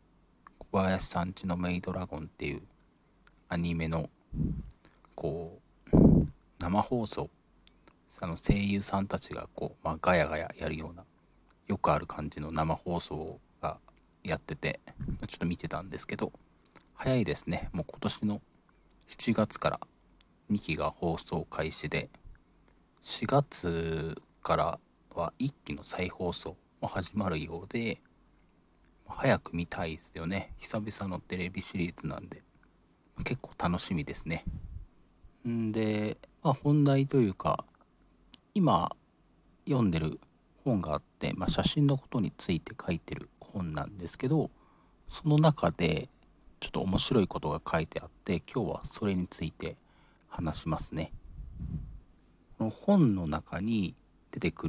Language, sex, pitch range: Japanese, male, 85-105 Hz